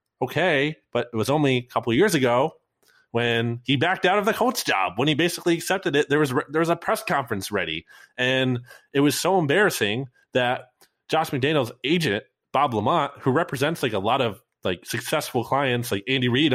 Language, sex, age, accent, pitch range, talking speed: English, male, 20-39, American, 105-140 Hz, 195 wpm